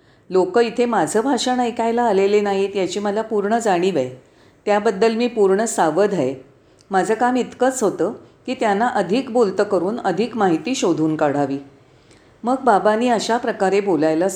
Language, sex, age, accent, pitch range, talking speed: Marathi, female, 40-59, native, 175-245 Hz, 145 wpm